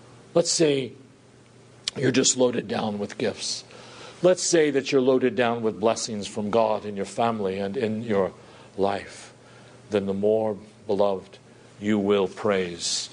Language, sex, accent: English, male, American